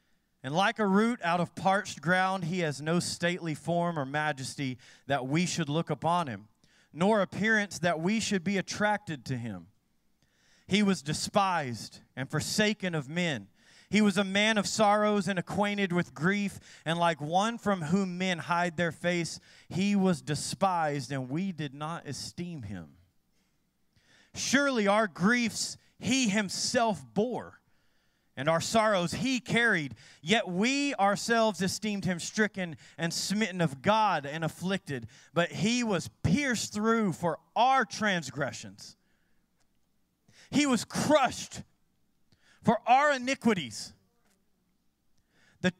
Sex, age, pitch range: male, 40-59, 155-210 Hz